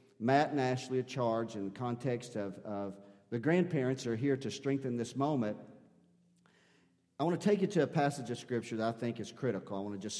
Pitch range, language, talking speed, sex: 105-135 Hz, English, 220 wpm, male